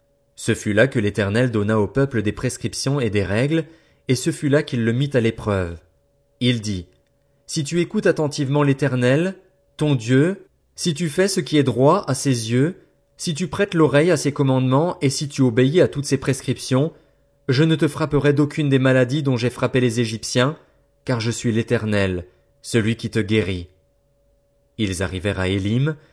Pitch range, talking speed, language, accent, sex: 105-145 Hz, 185 wpm, French, French, male